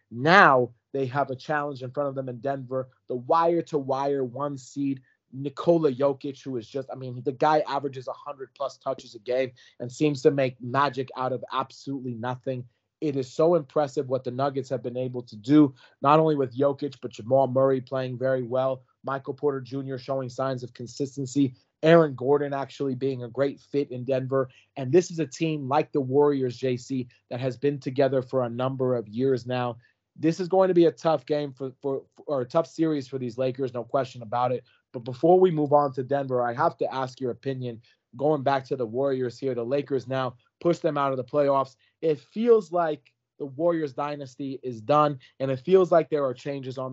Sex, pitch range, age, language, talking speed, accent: male, 130-150 Hz, 30-49, English, 210 wpm, American